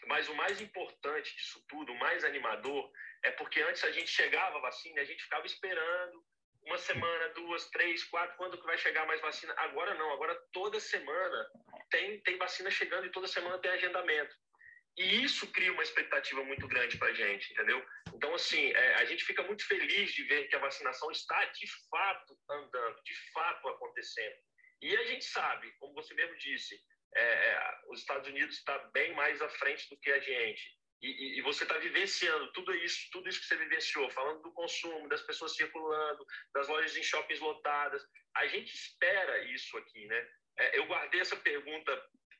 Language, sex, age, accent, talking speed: Portuguese, male, 40-59, Brazilian, 185 wpm